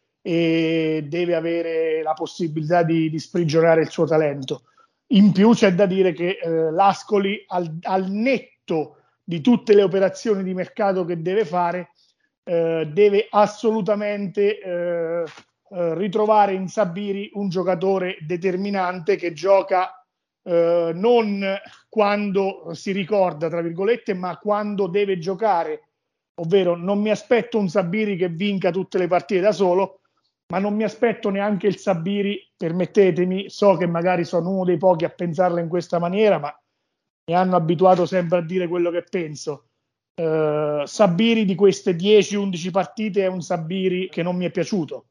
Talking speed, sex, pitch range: 150 wpm, male, 170-200 Hz